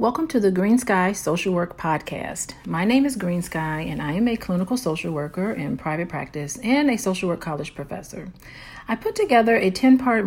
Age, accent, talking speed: 40-59, American, 205 wpm